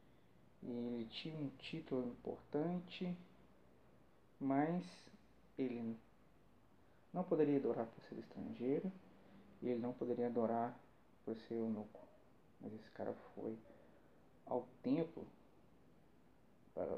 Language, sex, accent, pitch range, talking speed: Portuguese, male, Brazilian, 115-145 Hz, 105 wpm